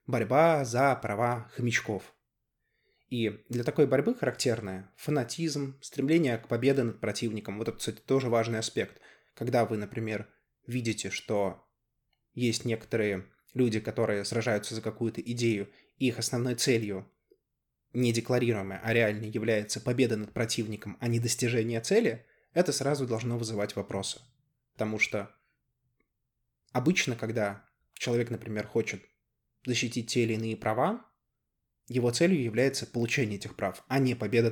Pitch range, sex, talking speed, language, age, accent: 110-130 Hz, male, 130 wpm, Russian, 20-39, native